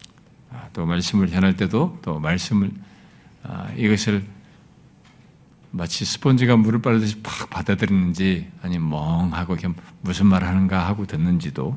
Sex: male